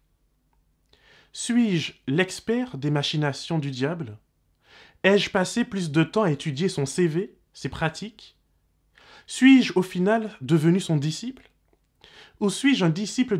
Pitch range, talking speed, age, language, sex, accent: 135-200 Hz, 120 wpm, 20-39, French, male, French